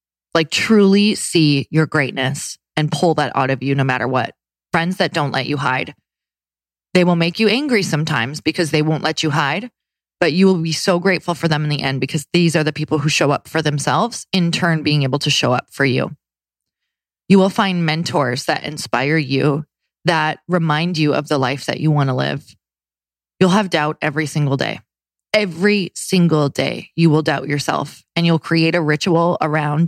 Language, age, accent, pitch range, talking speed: English, 20-39, American, 145-175 Hz, 200 wpm